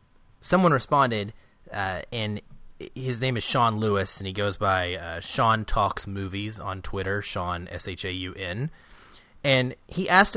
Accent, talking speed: American, 140 wpm